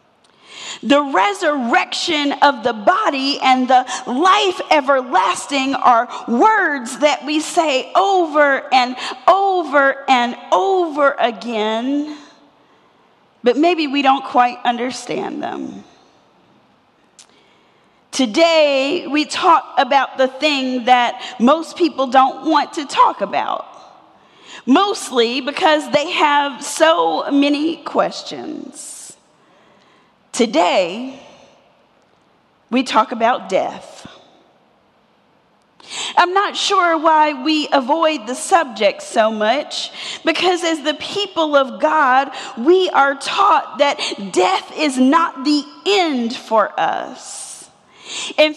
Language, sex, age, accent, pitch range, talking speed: English, female, 40-59, American, 260-330 Hz, 100 wpm